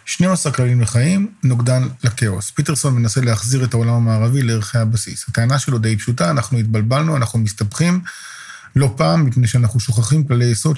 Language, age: Hebrew, 40-59